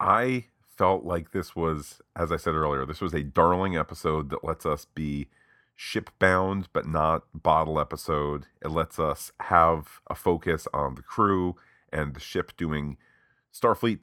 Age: 40-59